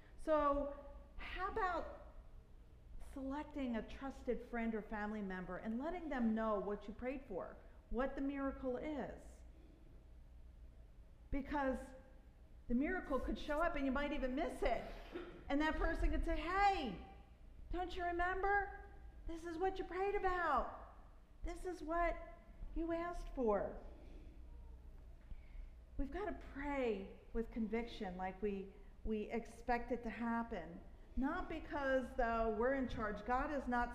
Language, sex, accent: English, female, American